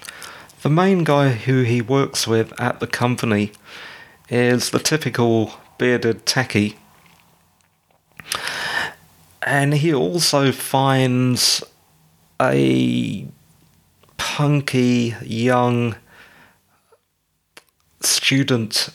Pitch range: 110-140 Hz